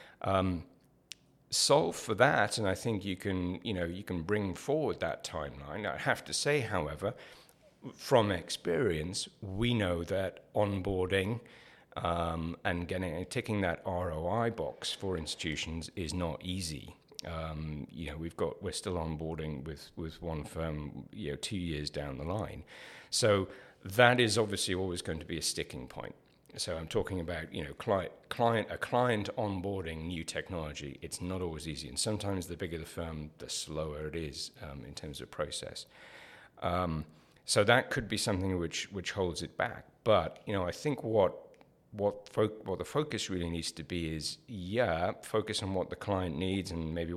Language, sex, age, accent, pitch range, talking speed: English, male, 50-69, British, 80-100 Hz, 175 wpm